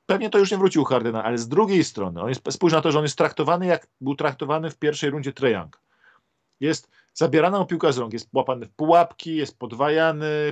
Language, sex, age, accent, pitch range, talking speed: Polish, male, 40-59, native, 130-160 Hz, 220 wpm